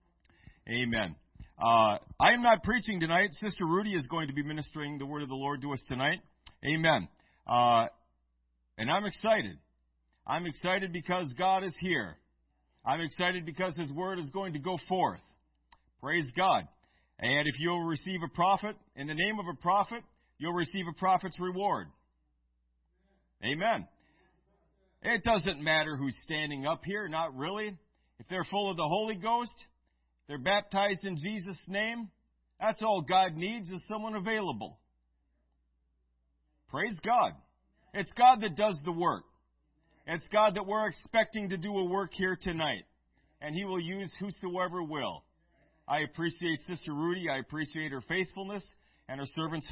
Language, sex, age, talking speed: English, male, 50-69, 155 wpm